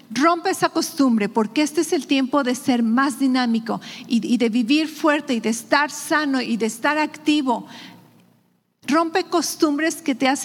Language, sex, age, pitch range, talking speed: English, female, 40-59, 215-265 Hz, 165 wpm